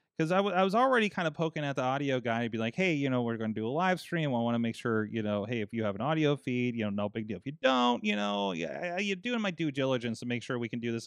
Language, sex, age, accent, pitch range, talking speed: English, male, 30-49, American, 120-200 Hz, 340 wpm